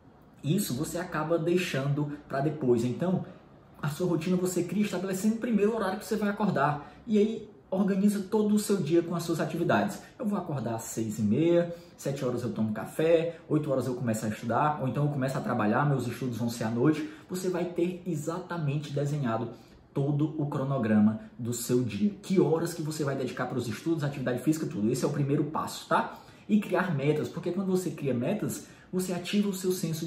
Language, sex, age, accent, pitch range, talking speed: Portuguese, male, 20-39, Brazilian, 135-175 Hz, 205 wpm